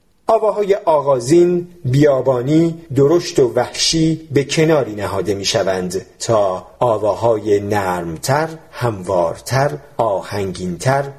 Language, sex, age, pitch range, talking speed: Persian, male, 40-59, 125-180 Hz, 80 wpm